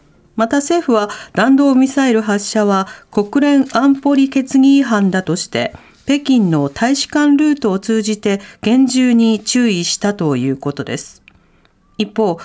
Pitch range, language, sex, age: 200-275 Hz, Japanese, female, 40-59